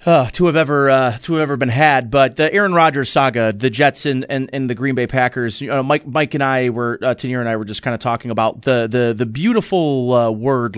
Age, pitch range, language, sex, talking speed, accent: 30-49, 120-155 Hz, English, male, 260 wpm, American